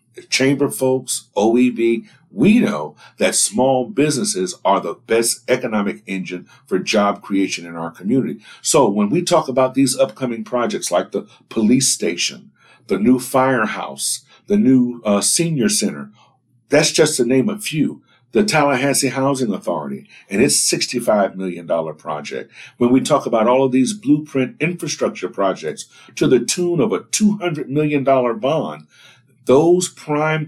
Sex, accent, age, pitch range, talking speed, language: male, American, 60-79, 110-140 Hz, 145 wpm, English